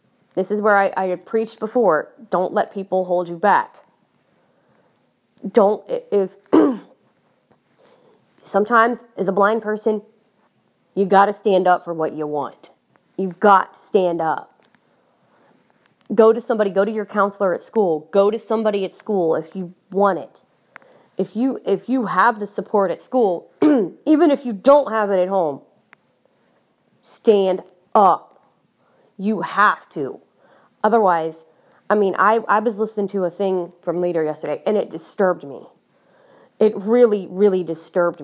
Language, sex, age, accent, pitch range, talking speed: English, female, 30-49, American, 180-220 Hz, 150 wpm